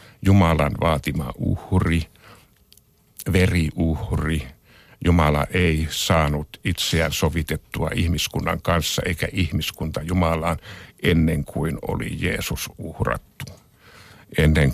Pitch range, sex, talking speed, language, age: 80-100 Hz, male, 80 wpm, Finnish, 60-79